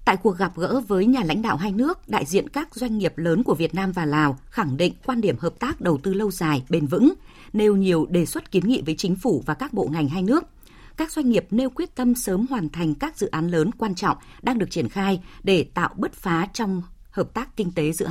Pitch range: 165-235 Hz